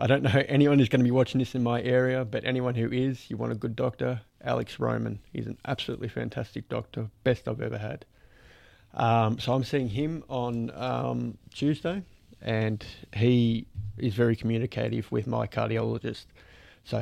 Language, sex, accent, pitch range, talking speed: English, male, Australian, 110-130 Hz, 175 wpm